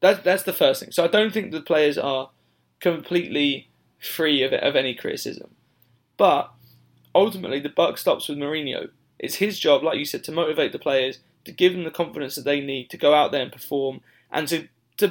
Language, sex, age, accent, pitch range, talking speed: English, male, 20-39, British, 140-180 Hz, 205 wpm